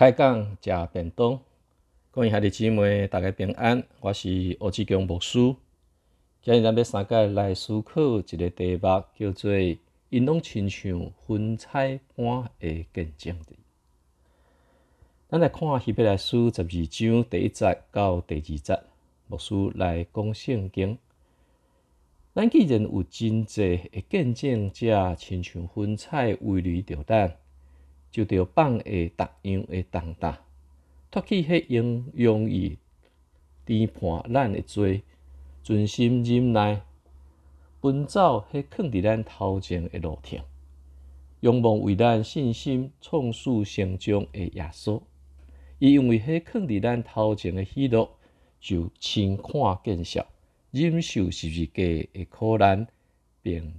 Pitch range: 85-115 Hz